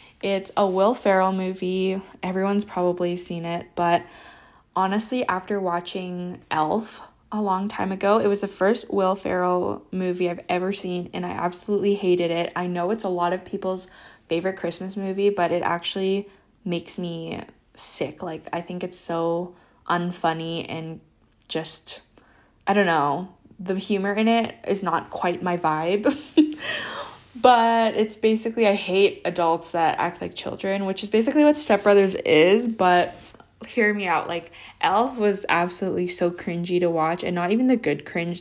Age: 20-39